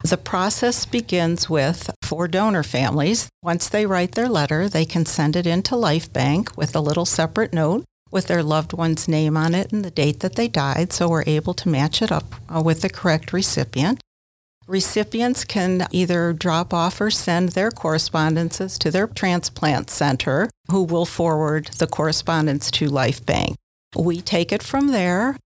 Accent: American